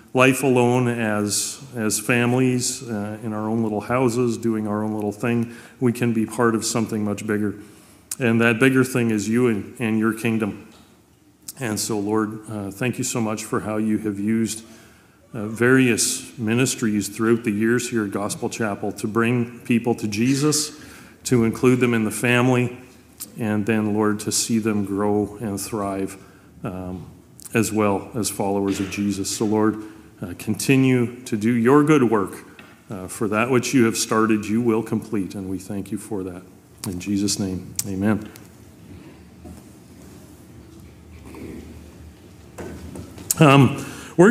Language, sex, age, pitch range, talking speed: English, male, 40-59, 105-130 Hz, 155 wpm